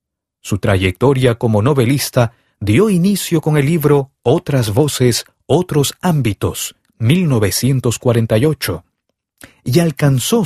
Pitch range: 110-165 Hz